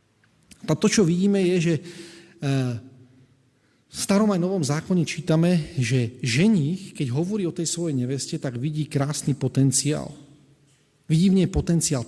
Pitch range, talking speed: 145-205 Hz, 140 wpm